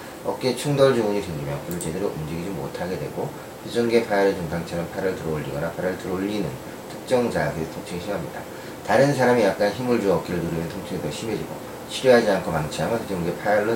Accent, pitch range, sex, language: native, 90-120 Hz, male, Korean